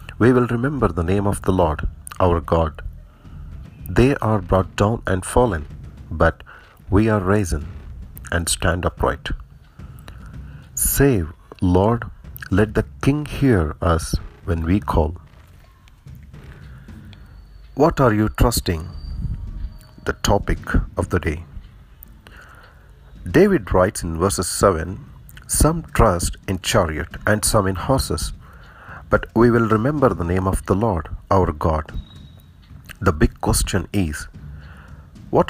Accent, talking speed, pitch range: Indian, 120 wpm, 85-110 Hz